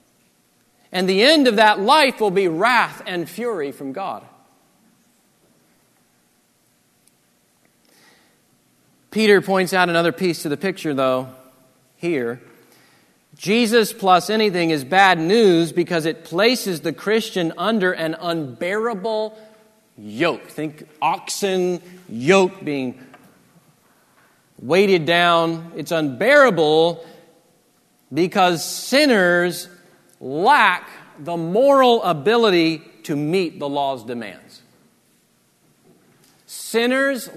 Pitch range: 165-220 Hz